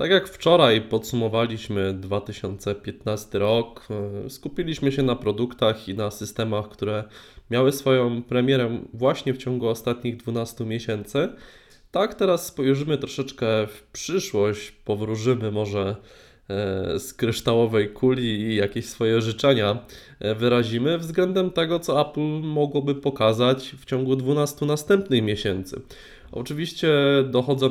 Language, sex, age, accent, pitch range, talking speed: Polish, male, 20-39, native, 105-130 Hz, 115 wpm